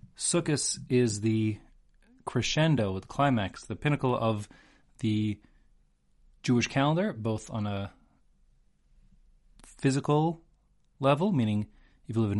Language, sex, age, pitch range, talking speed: English, male, 30-49, 105-135 Hz, 105 wpm